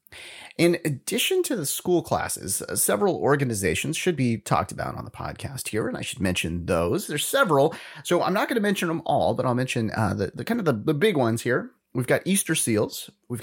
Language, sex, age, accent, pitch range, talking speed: English, male, 30-49, American, 105-165 Hz, 225 wpm